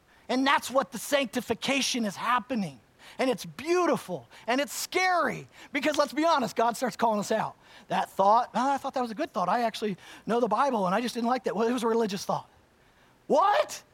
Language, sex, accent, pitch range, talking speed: English, male, American, 185-250 Hz, 210 wpm